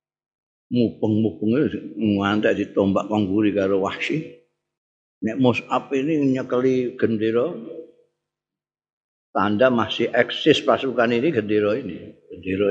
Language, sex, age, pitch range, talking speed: Indonesian, male, 50-69, 95-120 Hz, 105 wpm